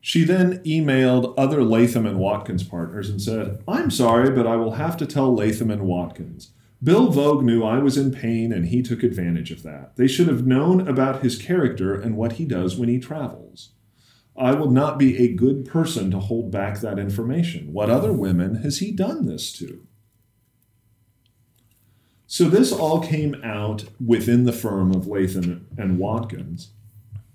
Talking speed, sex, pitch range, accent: 175 wpm, male, 105-130 Hz, American